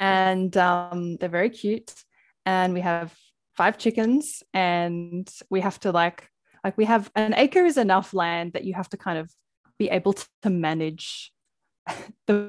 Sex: female